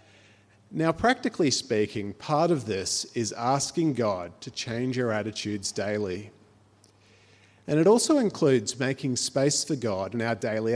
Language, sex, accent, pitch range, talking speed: English, male, Australian, 105-145 Hz, 140 wpm